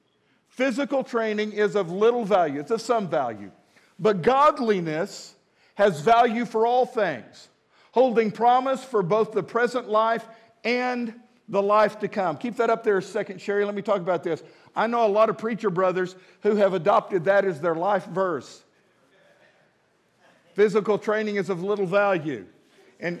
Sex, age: male, 50-69